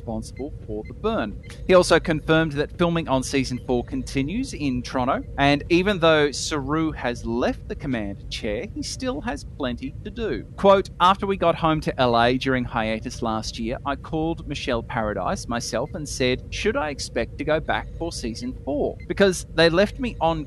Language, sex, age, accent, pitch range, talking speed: English, male, 30-49, Australian, 120-185 Hz, 180 wpm